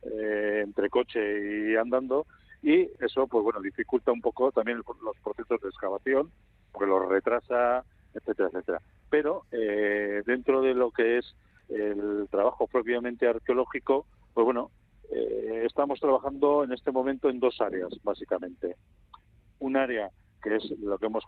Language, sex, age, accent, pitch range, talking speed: Spanish, male, 40-59, Spanish, 105-125 Hz, 150 wpm